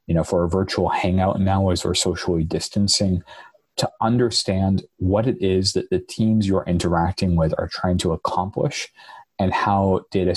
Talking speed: 170 wpm